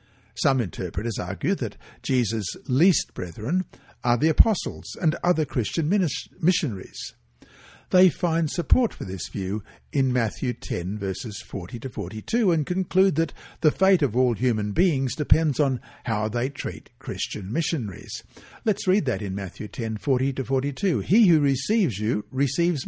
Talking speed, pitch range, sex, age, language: 150 wpm, 110-165 Hz, male, 60-79, English